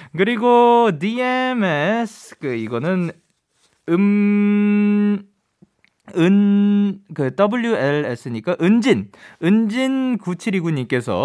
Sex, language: male, Korean